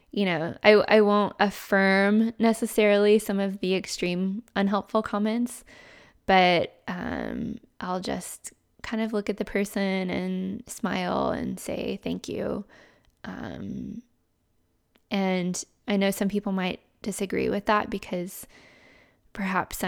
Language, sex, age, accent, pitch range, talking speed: English, female, 10-29, American, 185-220 Hz, 125 wpm